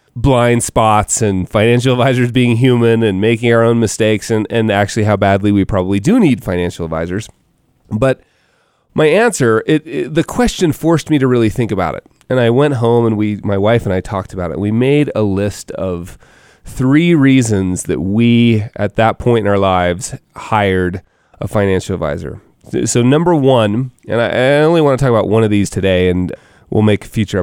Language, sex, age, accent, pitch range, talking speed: English, male, 30-49, American, 105-135 Hz, 195 wpm